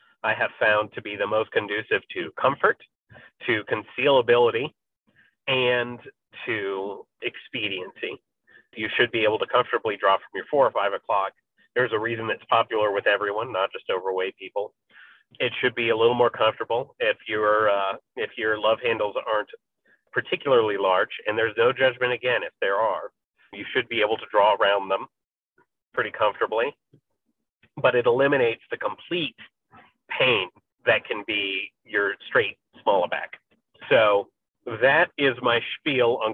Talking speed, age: 155 wpm, 30-49